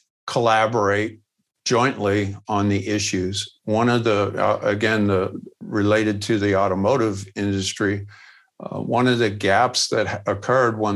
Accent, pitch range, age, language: American, 100-115 Hz, 50-69, English